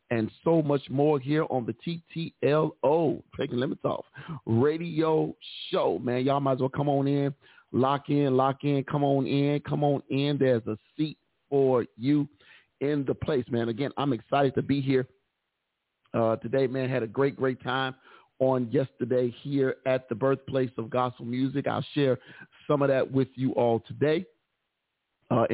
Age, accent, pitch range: 40-59, American, 125-145 Hz